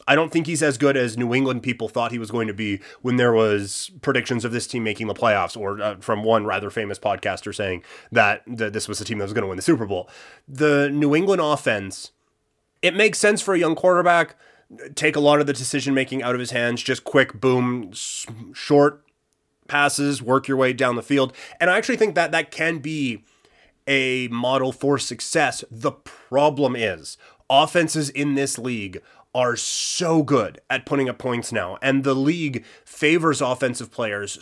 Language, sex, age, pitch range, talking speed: English, male, 30-49, 120-145 Hz, 195 wpm